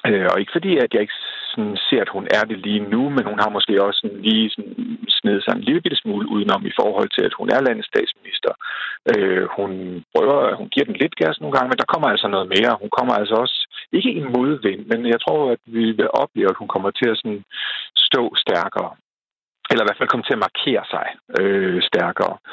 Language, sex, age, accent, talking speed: Danish, male, 50-69, native, 225 wpm